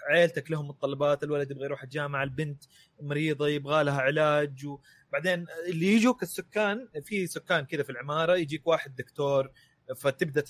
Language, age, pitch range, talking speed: Arabic, 20-39, 135-165 Hz, 145 wpm